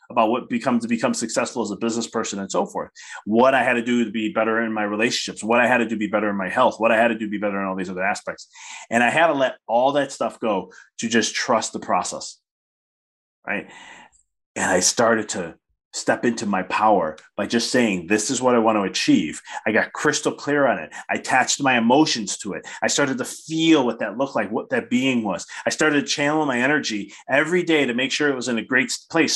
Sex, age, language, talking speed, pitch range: male, 30-49, English, 250 wpm, 120-175 Hz